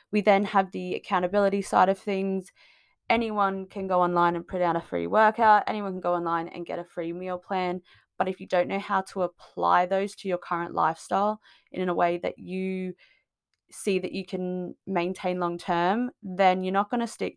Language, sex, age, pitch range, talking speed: English, female, 20-39, 180-210 Hz, 205 wpm